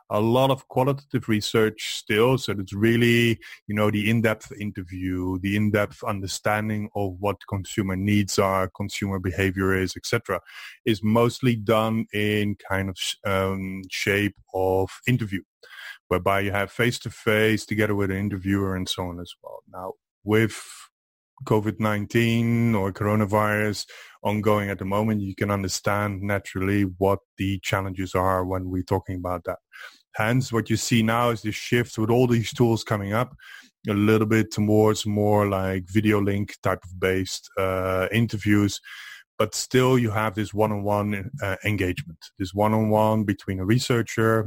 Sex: male